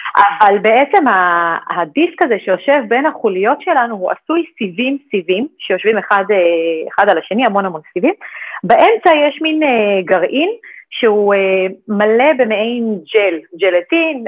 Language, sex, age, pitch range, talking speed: English, female, 40-59, 195-285 Hz, 120 wpm